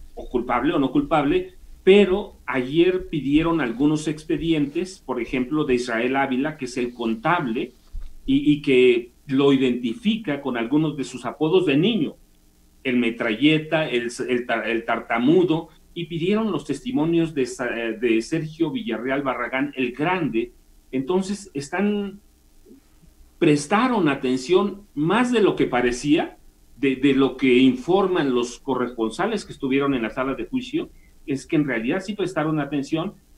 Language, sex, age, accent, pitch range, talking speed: Spanish, male, 40-59, Mexican, 125-180 Hz, 135 wpm